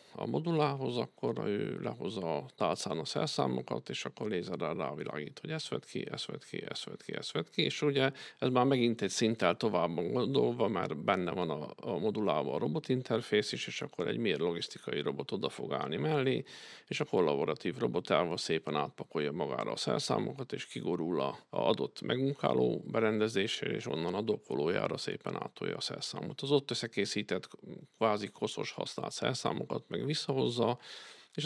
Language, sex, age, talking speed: Hungarian, male, 50-69, 160 wpm